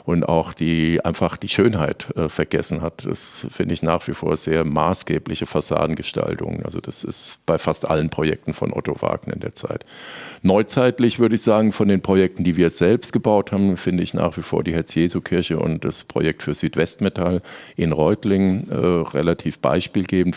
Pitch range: 80-90 Hz